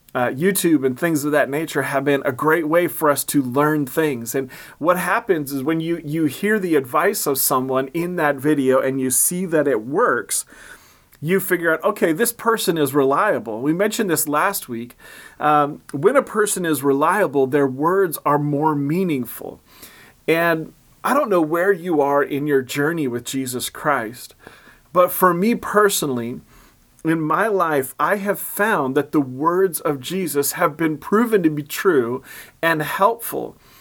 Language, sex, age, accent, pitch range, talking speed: English, male, 30-49, American, 140-185 Hz, 175 wpm